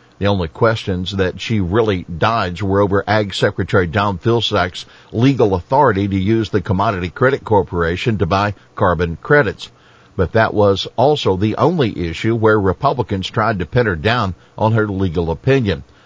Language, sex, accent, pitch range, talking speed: English, male, American, 90-110 Hz, 160 wpm